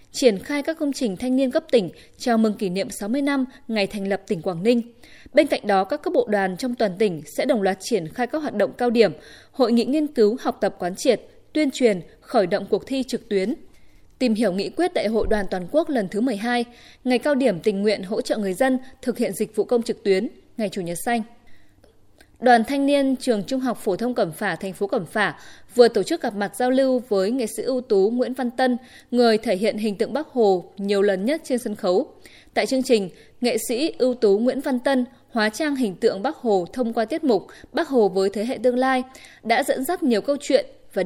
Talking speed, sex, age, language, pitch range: 240 wpm, female, 20-39, Vietnamese, 205-260 Hz